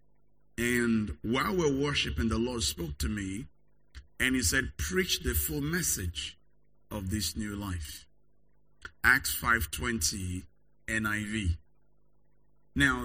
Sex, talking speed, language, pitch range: male, 110 wpm, English, 85-125 Hz